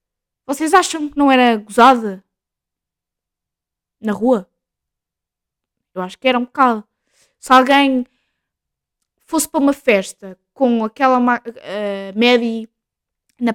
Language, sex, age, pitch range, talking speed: Portuguese, female, 20-39, 225-295 Hz, 110 wpm